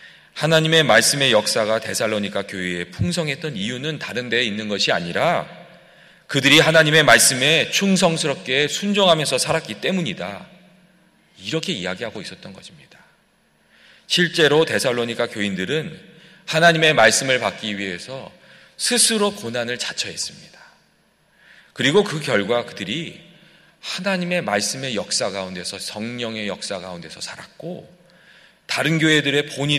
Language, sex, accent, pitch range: Korean, male, native, 105-170 Hz